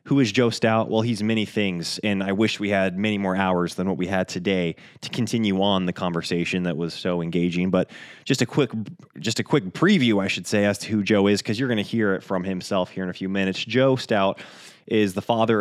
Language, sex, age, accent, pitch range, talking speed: English, male, 20-39, American, 100-120 Hz, 245 wpm